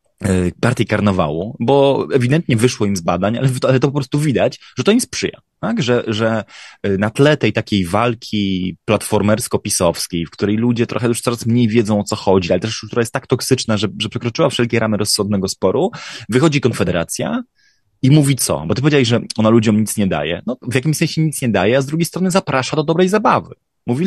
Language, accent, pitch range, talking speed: Polish, native, 100-130 Hz, 200 wpm